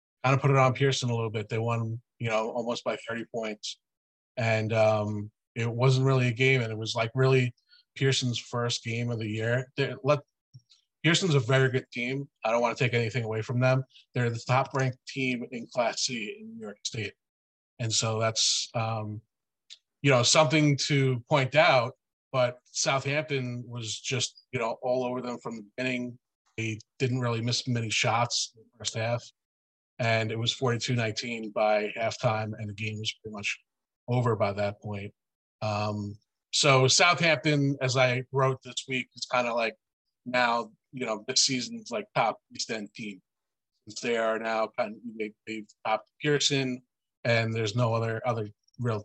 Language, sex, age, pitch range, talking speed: English, male, 30-49, 110-130 Hz, 180 wpm